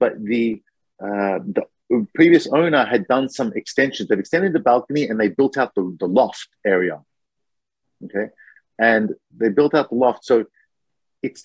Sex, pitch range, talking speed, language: male, 100-135 Hz, 160 wpm, English